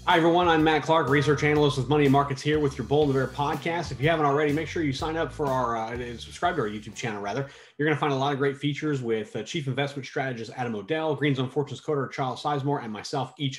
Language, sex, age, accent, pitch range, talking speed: English, male, 30-49, American, 125-155 Hz, 275 wpm